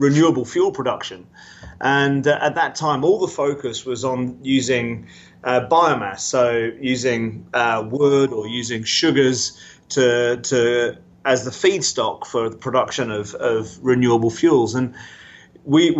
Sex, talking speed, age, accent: male, 140 wpm, 30-49, British